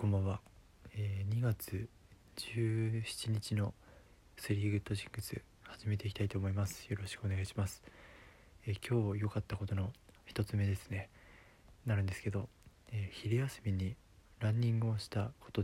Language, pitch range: Japanese, 95-115 Hz